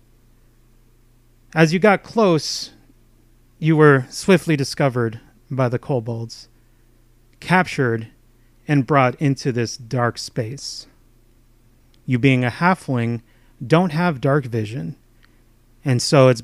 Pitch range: 120-145 Hz